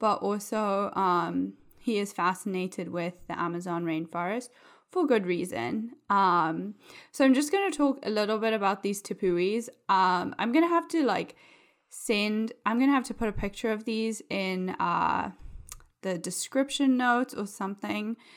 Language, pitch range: English, 185-235 Hz